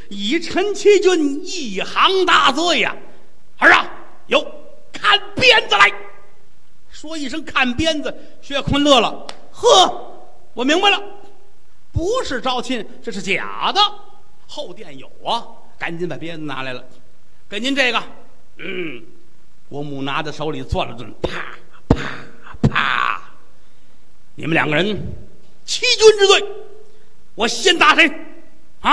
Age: 50-69